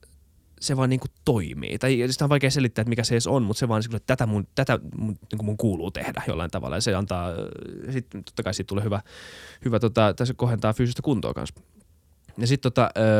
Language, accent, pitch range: Finnish, native, 85-115 Hz